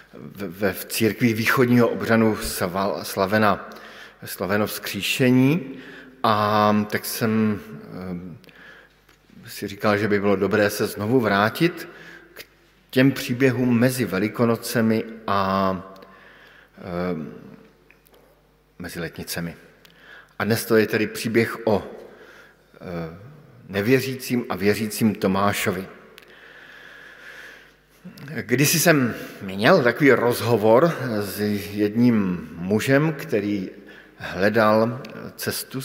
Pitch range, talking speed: 100-125 Hz, 85 wpm